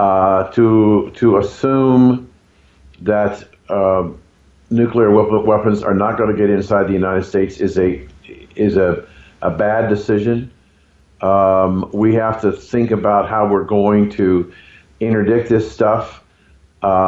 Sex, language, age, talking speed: male, English, 50-69, 135 wpm